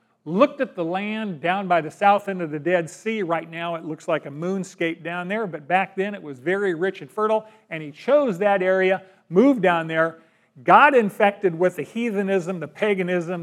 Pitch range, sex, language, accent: 170-215 Hz, male, English, American